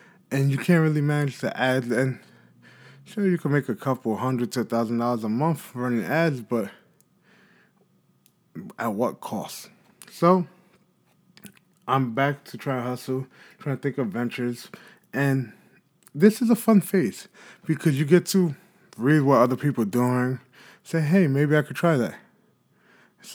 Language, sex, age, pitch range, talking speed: English, male, 20-39, 130-180 Hz, 160 wpm